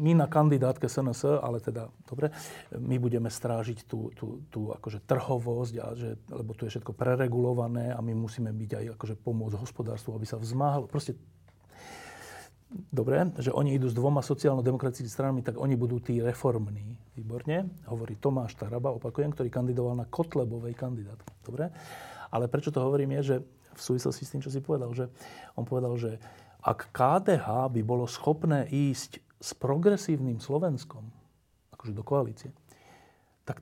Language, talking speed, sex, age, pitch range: Slovak, 155 wpm, male, 40-59, 120-145 Hz